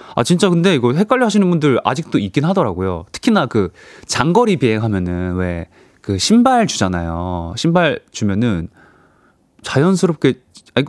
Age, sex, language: 20-39, male, Korean